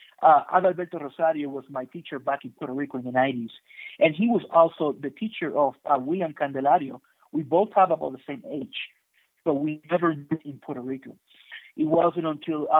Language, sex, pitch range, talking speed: English, male, 135-165 Hz, 190 wpm